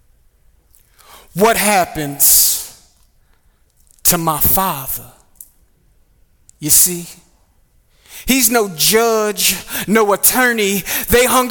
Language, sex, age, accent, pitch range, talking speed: English, male, 30-49, American, 170-250 Hz, 75 wpm